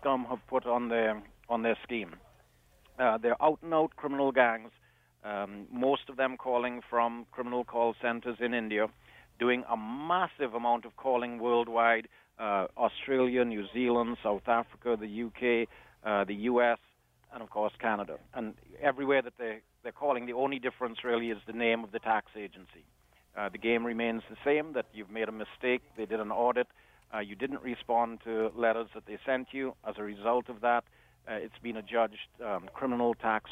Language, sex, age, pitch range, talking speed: English, male, 60-79, 110-125 Hz, 180 wpm